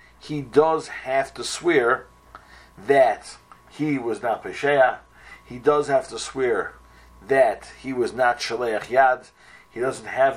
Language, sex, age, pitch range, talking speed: English, male, 50-69, 120-150 Hz, 140 wpm